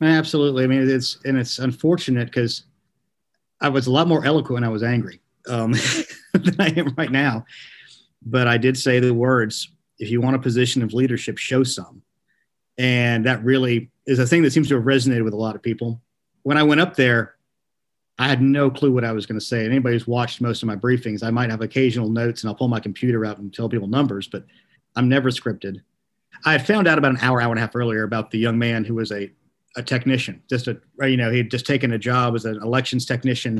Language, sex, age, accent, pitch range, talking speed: English, male, 50-69, American, 115-130 Hz, 235 wpm